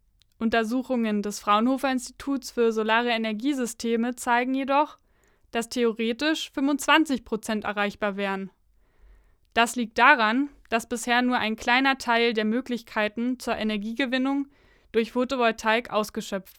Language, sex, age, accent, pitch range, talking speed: German, female, 20-39, German, 215-255 Hz, 105 wpm